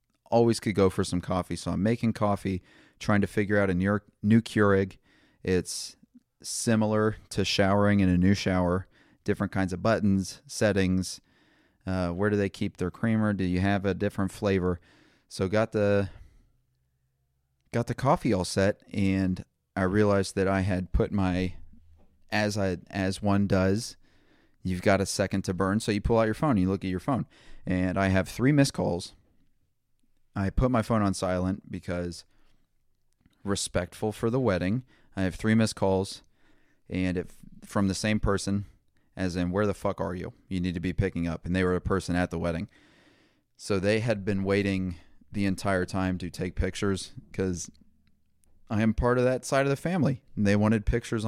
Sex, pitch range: male, 90-105 Hz